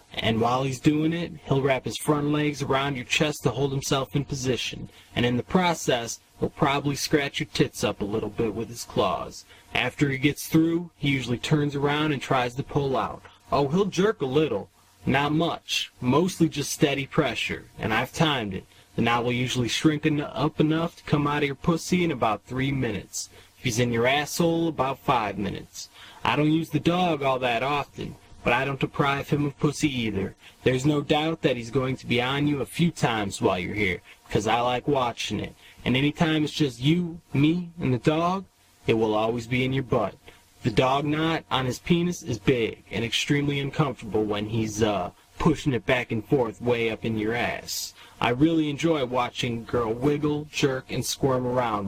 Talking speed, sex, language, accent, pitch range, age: 200 wpm, male, English, American, 120-155 Hz, 20-39